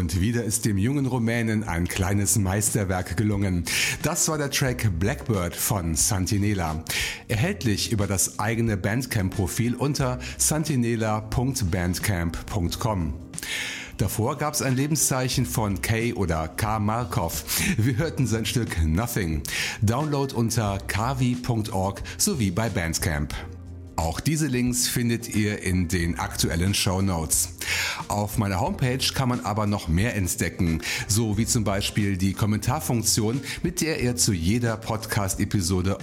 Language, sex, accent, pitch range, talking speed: German, male, German, 95-120 Hz, 125 wpm